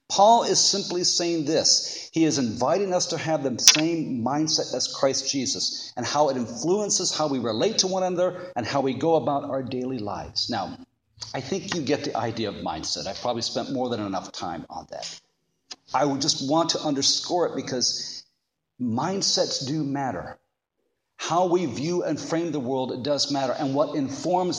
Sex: male